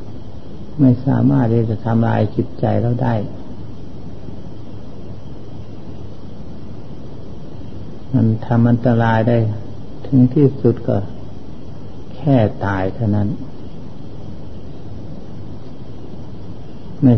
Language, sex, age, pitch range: Thai, male, 60-79, 105-125 Hz